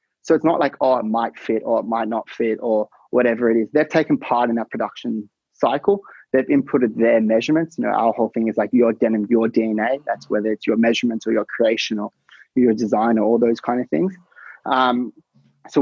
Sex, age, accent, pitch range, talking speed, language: male, 20-39, Australian, 115-145 Hz, 220 wpm, English